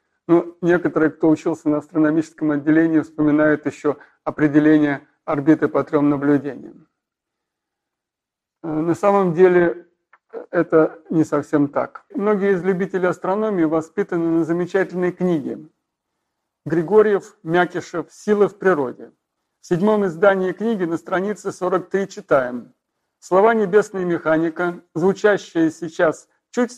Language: Russian